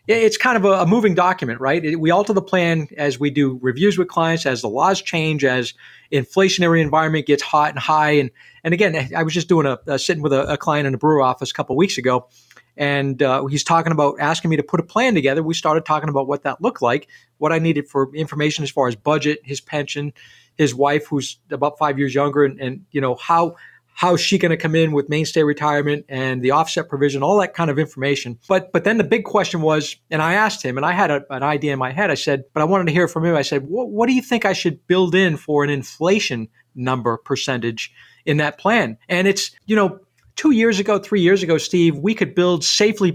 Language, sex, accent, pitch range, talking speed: English, male, American, 140-180 Hz, 245 wpm